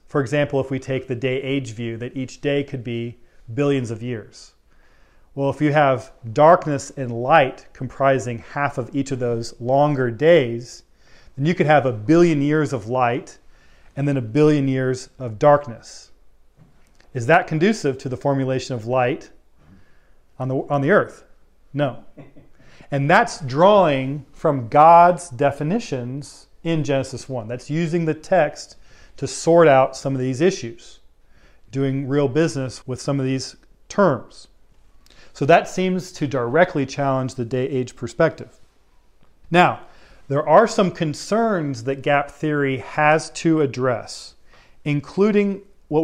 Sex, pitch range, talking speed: male, 130-155 Hz, 145 wpm